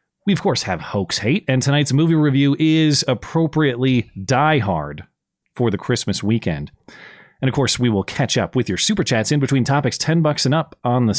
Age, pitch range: 30-49, 120-155 Hz